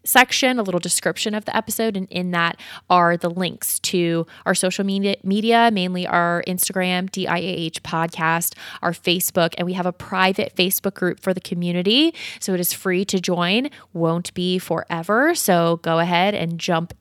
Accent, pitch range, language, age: American, 170-205 Hz, English, 20-39